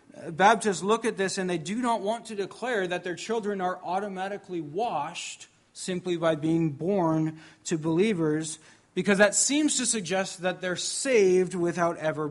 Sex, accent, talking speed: male, American, 160 wpm